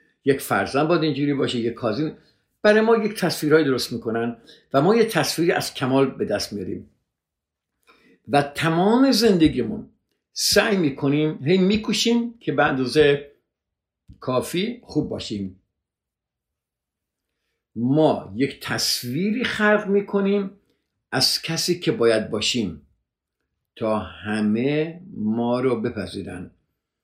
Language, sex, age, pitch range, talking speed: Persian, male, 50-69, 110-155 Hz, 110 wpm